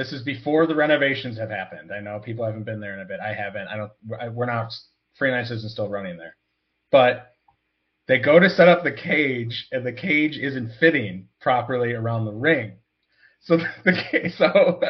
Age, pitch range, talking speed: 30-49, 120-160 Hz, 190 wpm